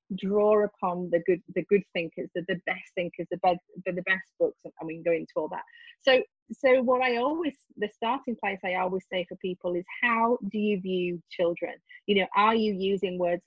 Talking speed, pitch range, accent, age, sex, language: 225 wpm, 185-245 Hz, British, 30-49, female, English